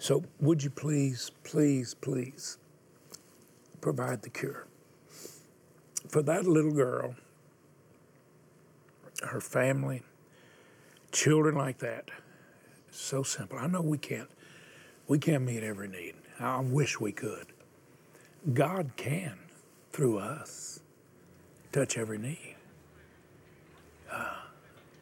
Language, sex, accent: English, male, American